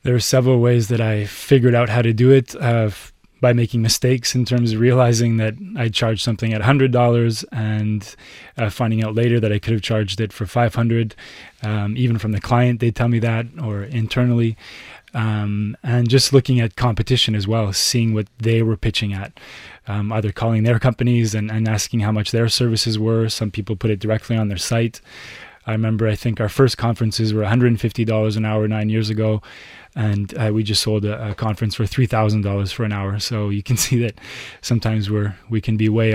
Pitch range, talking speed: 105-120 Hz, 205 wpm